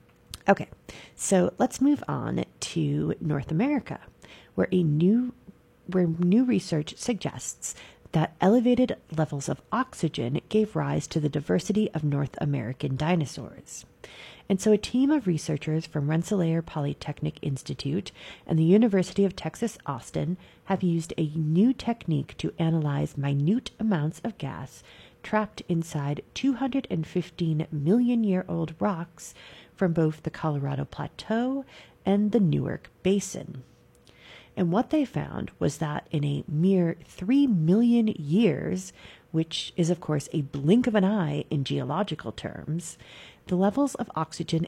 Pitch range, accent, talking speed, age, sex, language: 150-200 Hz, American, 130 wpm, 40-59, female, English